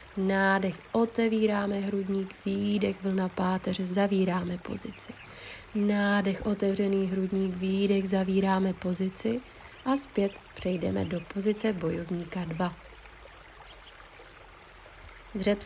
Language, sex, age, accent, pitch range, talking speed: Czech, female, 30-49, native, 185-210 Hz, 85 wpm